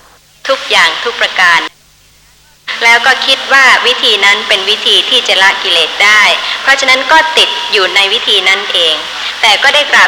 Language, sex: Thai, male